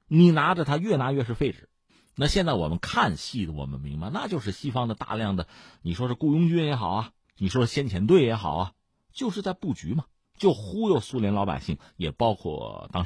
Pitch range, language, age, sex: 90-150 Hz, Chinese, 50-69, male